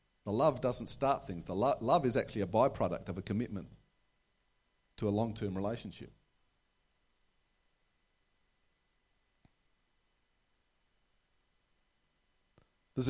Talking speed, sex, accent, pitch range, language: 90 wpm, male, Australian, 95-135 Hz, English